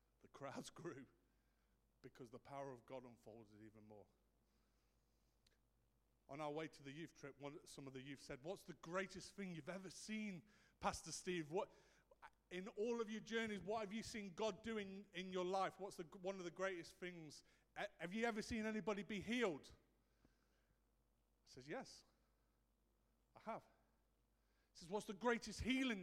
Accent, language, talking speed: British, English, 170 wpm